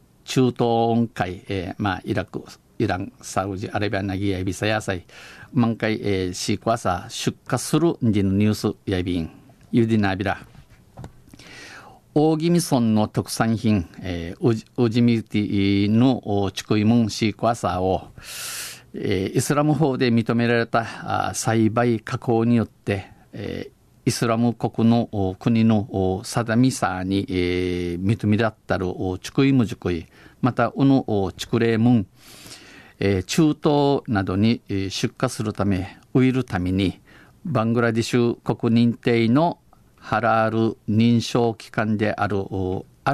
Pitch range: 100-120 Hz